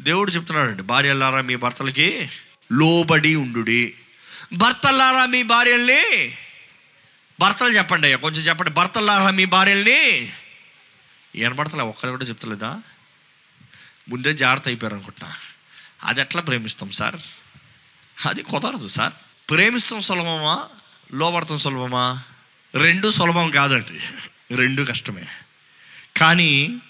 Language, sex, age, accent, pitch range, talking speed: Telugu, male, 20-39, native, 140-210 Hz, 105 wpm